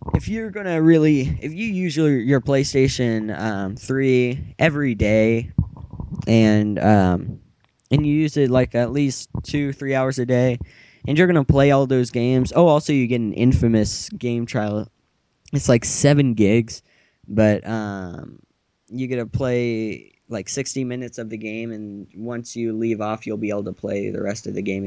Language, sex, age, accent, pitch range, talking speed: English, male, 10-29, American, 105-135 Hz, 185 wpm